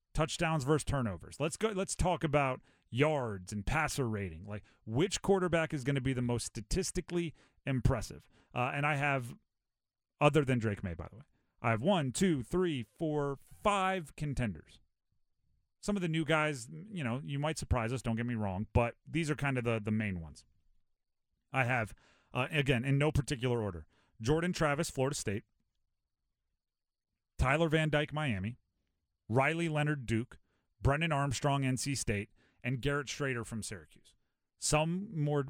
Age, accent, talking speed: 30-49, American, 160 wpm